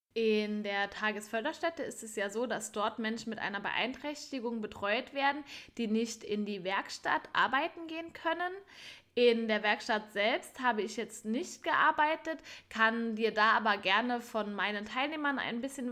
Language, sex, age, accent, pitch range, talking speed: German, female, 10-29, German, 210-270 Hz, 160 wpm